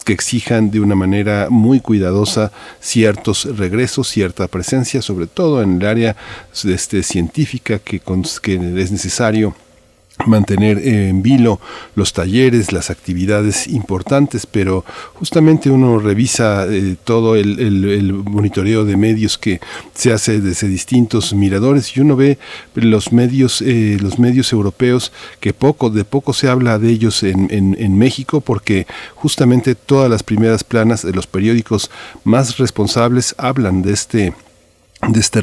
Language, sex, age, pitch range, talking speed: Spanish, male, 50-69, 100-120 Hz, 145 wpm